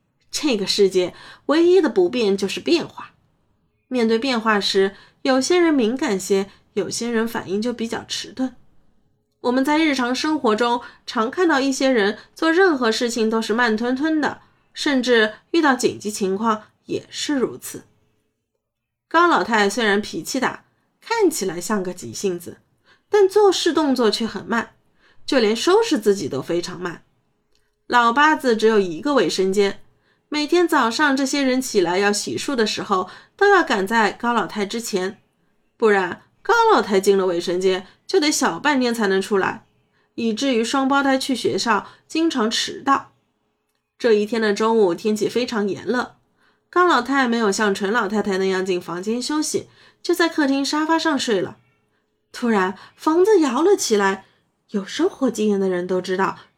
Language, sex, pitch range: Chinese, female, 200-295 Hz